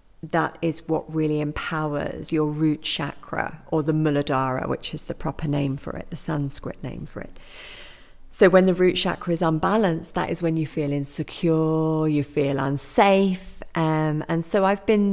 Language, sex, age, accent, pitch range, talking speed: English, female, 40-59, British, 150-175 Hz, 175 wpm